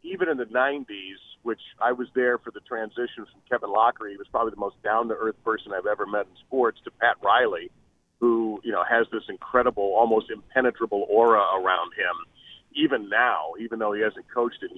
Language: English